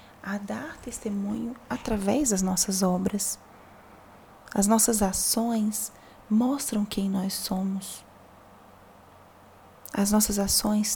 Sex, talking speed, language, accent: female, 95 wpm, Portuguese, Brazilian